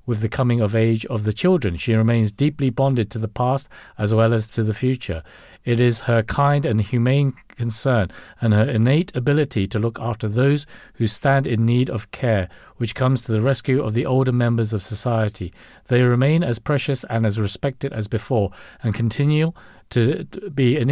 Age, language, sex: 50-69, English, male